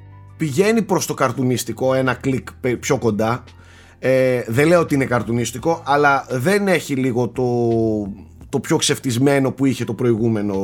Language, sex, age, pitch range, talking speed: Greek, male, 30-49, 115-165 Hz, 145 wpm